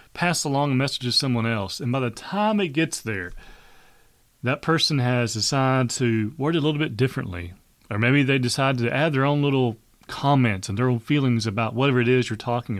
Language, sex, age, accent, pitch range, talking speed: English, male, 30-49, American, 115-150 Hz, 210 wpm